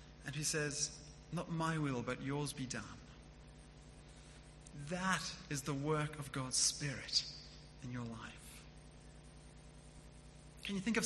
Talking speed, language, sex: 130 wpm, English, male